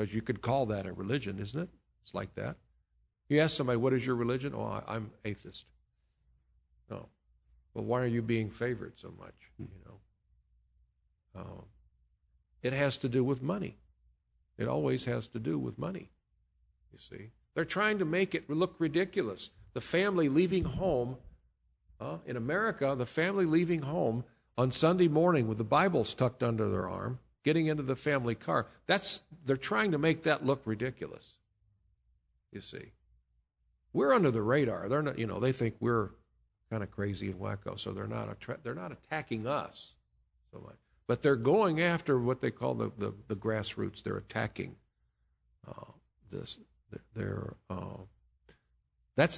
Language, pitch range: English, 95-135 Hz